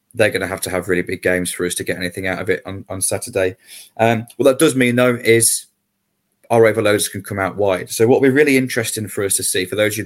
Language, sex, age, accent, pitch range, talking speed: English, male, 20-39, British, 95-120 Hz, 280 wpm